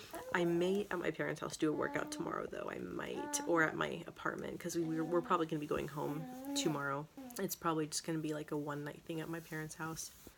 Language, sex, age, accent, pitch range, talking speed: English, female, 30-49, American, 160-185 Hz, 235 wpm